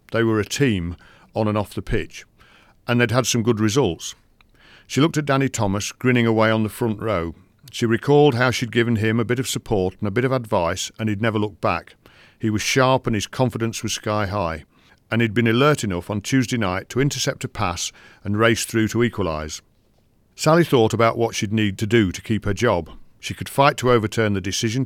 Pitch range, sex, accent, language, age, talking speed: 100-120 Hz, male, British, English, 50-69, 220 wpm